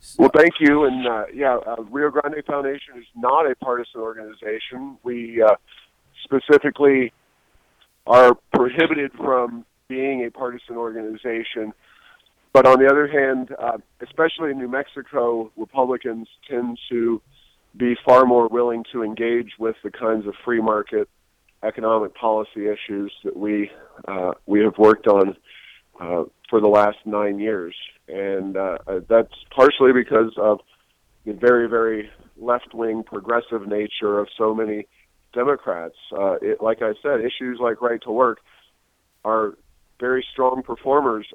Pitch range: 110-130 Hz